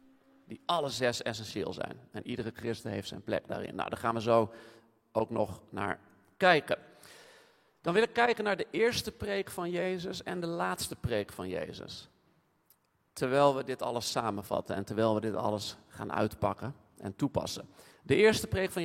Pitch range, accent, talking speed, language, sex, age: 110-155 Hz, Dutch, 175 wpm, Dutch, male, 40-59